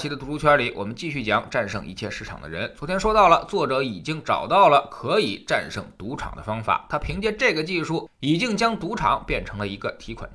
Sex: male